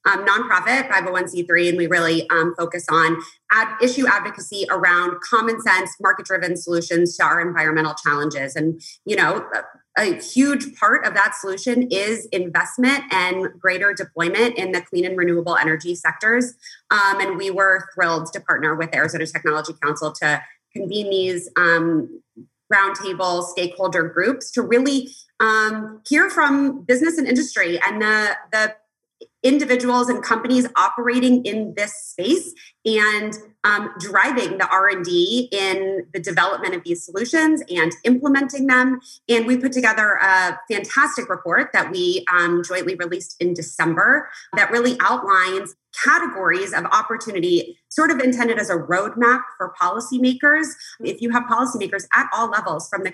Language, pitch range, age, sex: English, 180-245 Hz, 20-39, female